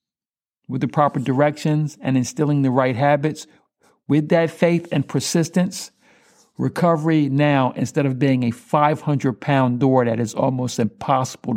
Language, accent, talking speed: English, American, 145 wpm